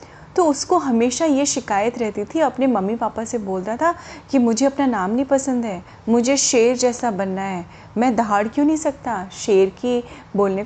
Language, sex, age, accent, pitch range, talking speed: Hindi, female, 30-49, native, 215-300 Hz, 185 wpm